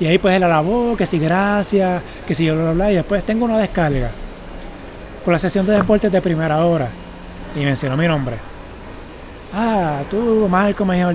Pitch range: 150-200 Hz